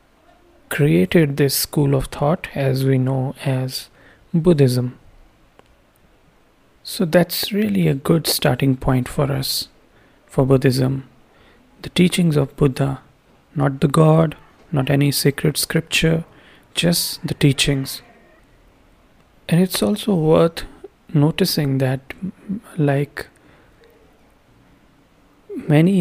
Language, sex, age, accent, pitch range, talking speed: English, male, 30-49, Indian, 135-165 Hz, 100 wpm